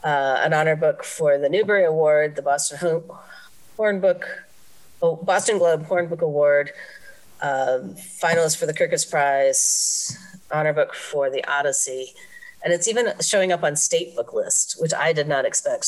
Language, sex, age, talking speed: English, female, 40-59, 150 wpm